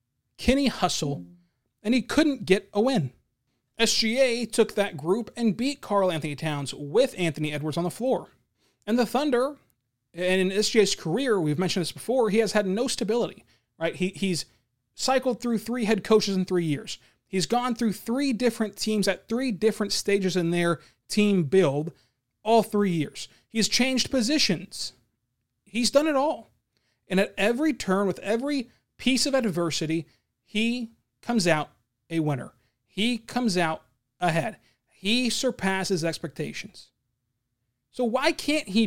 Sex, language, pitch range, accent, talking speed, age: male, English, 150-230 Hz, American, 155 wpm, 30-49